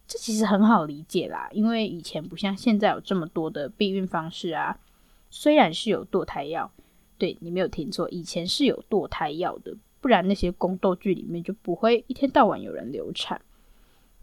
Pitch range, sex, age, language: 175-230 Hz, female, 10-29, Chinese